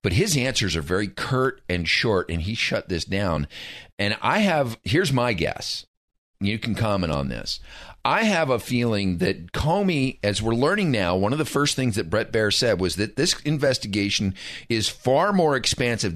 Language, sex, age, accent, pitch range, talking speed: English, male, 40-59, American, 95-125 Hz, 190 wpm